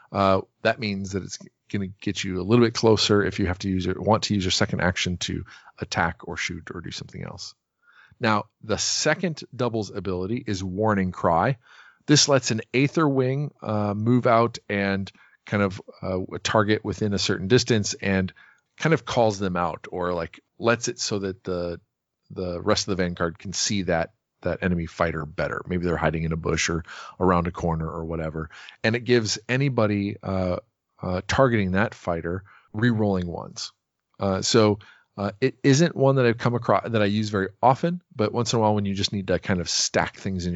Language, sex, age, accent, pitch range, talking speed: English, male, 40-59, American, 90-110 Hz, 200 wpm